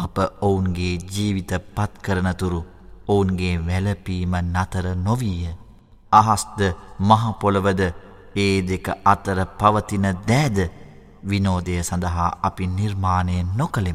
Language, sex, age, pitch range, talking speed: Arabic, male, 30-49, 90-100 Hz, 105 wpm